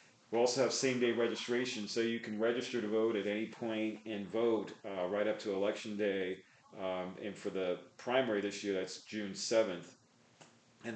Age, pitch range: 40-59, 100-120 Hz